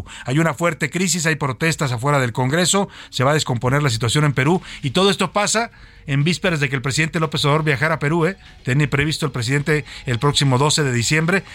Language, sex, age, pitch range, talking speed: Spanish, male, 50-69, 120-155 Hz, 215 wpm